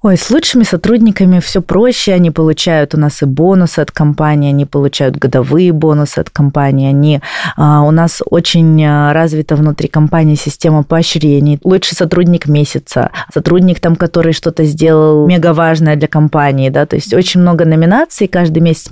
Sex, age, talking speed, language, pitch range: female, 20-39, 155 wpm, Russian, 155-185 Hz